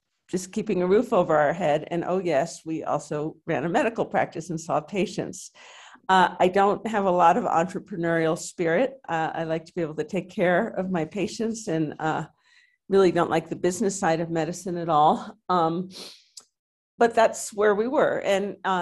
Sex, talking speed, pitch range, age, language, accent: female, 190 wpm, 160-200 Hz, 50-69, English, American